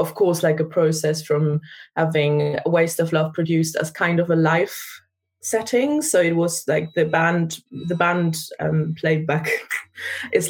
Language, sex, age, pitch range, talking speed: English, female, 20-39, 155-175 Hz, 170 wpm